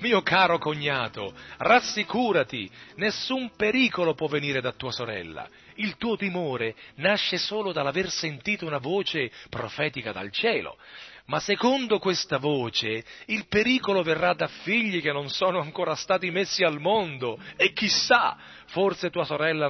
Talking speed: 135 wpm